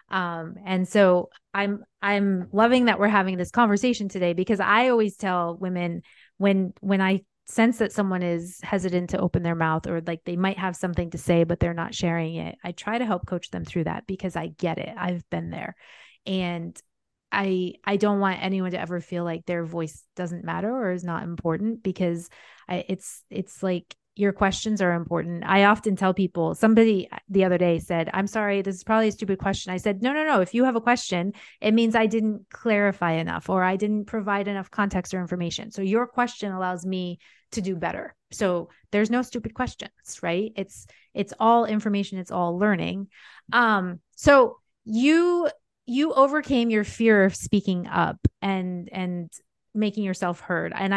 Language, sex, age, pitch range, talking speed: English, female, 30-49, 180-215 Hz, 190 wpm